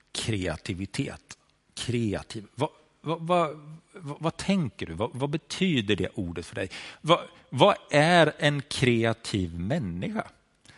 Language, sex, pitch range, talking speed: Swedish, male, 105-140 Hz, 120 wpm